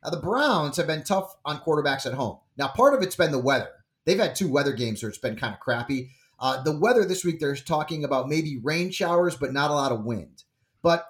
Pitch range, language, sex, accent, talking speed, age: 120-155 Hz, English, male, American, 250 wpm, 30-49